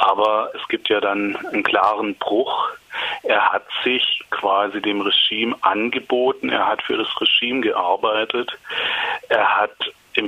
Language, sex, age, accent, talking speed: German, male, 30-49, German, 140 wpm